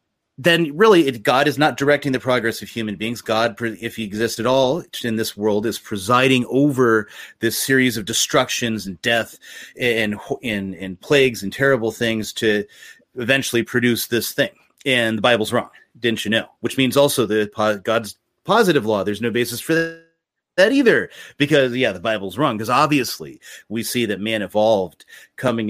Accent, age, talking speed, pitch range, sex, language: American, 30-49, 175 wpm, 110-135 Hz, male, English